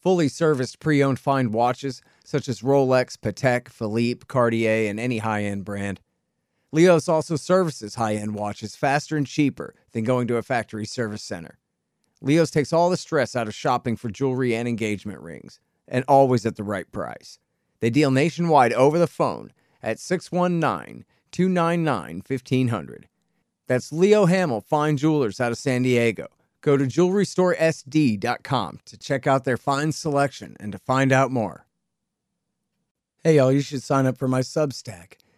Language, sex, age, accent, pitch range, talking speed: English, male, 40-59, American, 115-155 Hz, 150 wpm